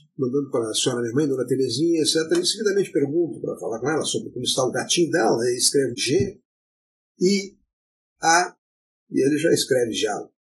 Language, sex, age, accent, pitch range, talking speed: Portuguese, male, 50-69, Brazilian, 130-175 Hz, 190 wpm